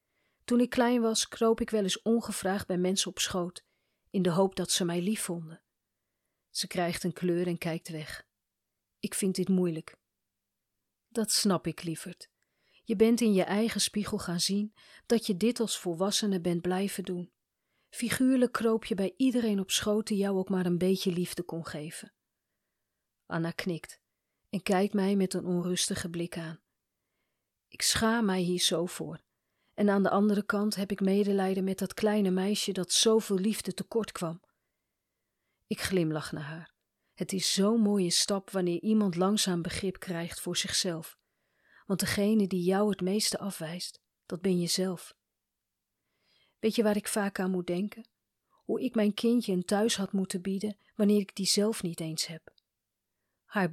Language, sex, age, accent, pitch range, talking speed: Dutch, female, 40-59, Dutch, 175-210 Hz, 170 wpm